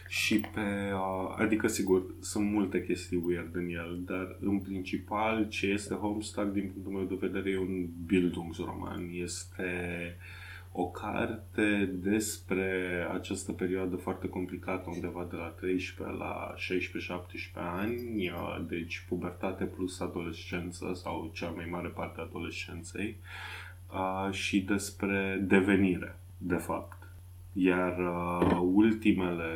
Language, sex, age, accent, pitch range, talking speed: Romanian, male, 20-39, native, 90-95 Hz, 115 wpm